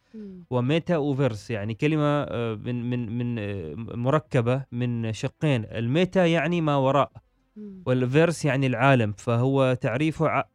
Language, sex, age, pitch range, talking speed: Arabic, male, 20-39, 125-155 Hz, 110 wpm